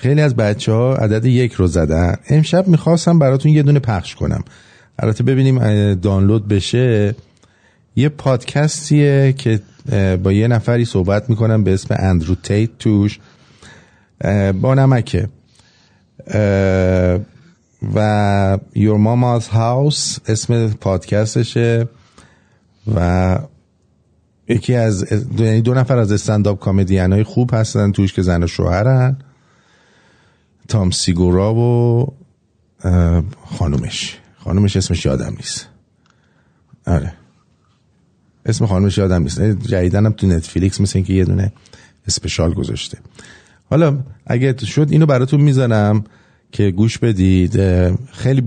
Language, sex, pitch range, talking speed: English, male, 95-125 Hz, 110 wpm